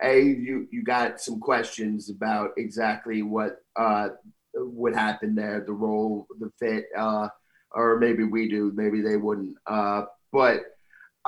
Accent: American